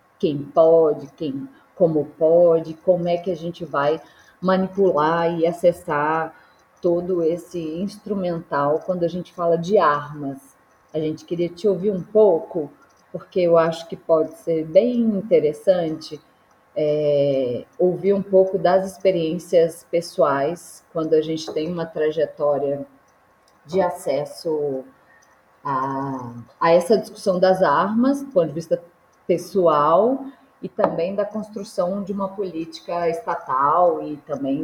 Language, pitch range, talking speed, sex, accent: Portuguese, 145-185 Hz, 125 wpm, female, Brazilian